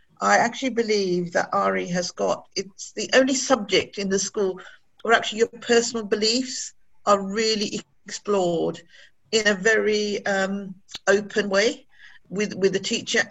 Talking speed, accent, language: 145 wpm, British, English